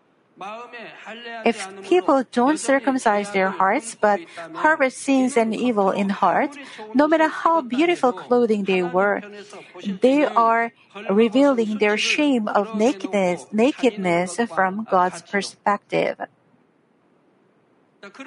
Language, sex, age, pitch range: Korean, female, 50-69, 205-260 Hz